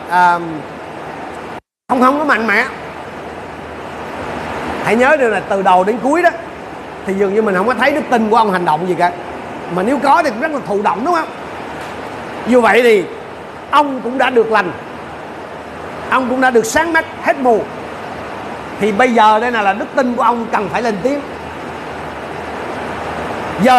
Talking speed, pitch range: 180 wpm, 220-290 Hz